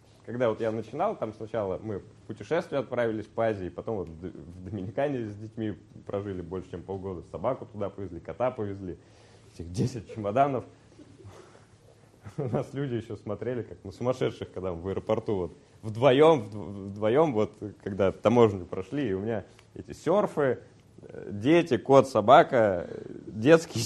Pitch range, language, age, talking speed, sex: 105-140 Hz, Russian, 20-39, 145 wpm, male